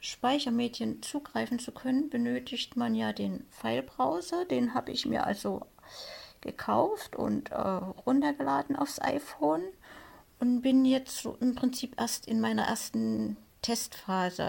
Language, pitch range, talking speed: German, 210-255 Hz, 125 wpm